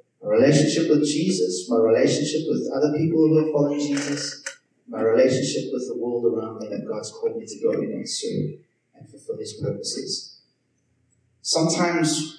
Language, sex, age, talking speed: English, male, 30-49, 160 wpm